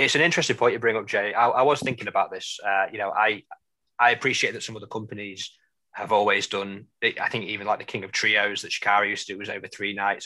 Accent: British